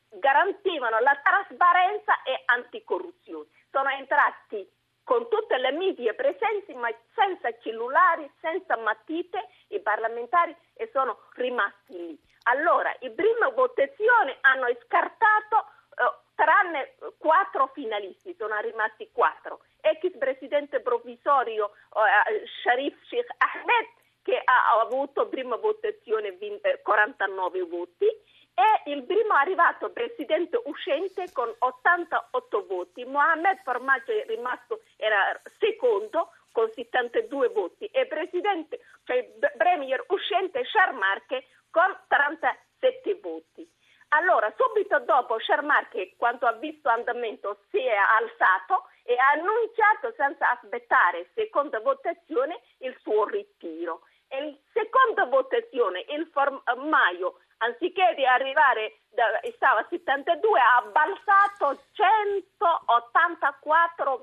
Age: 40-59